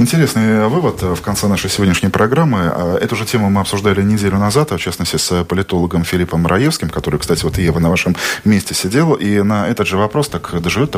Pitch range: 90-125 Hz